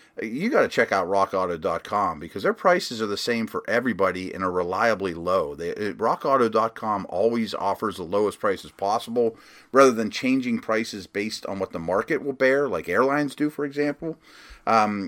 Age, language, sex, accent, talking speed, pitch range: 30-49, English, male, American, 170 wpm, 100-130 Hz